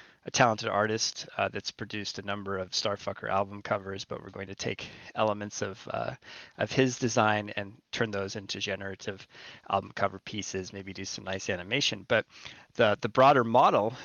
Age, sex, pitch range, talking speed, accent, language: 30-49, male, 100-125 Hz, 175 wpm, American, English